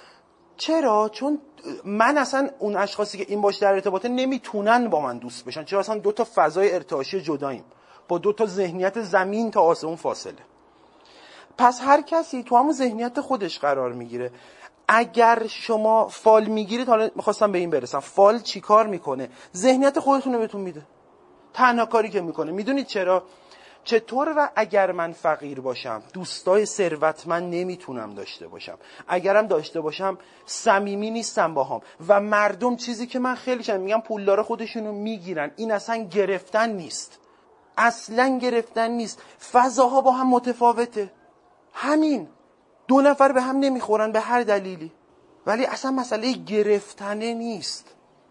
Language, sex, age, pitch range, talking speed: Persian, male, 30-49, 190-245 Hz, 145 wpm